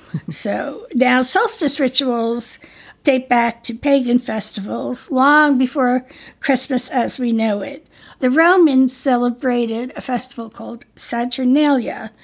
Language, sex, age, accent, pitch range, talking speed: English, female, 60-79, American, 235-275 Hz, 115 wpm